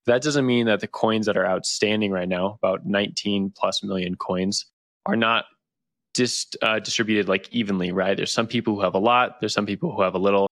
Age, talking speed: 20-39, 220 wpm